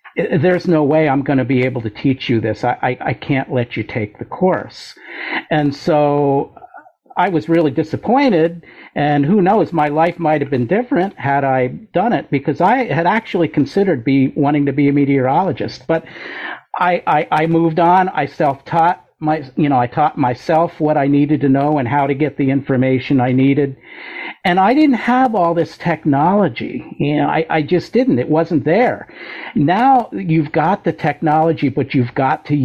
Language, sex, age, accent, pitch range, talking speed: English, male, 50-69, American, 135-165 Hz, 190 wpm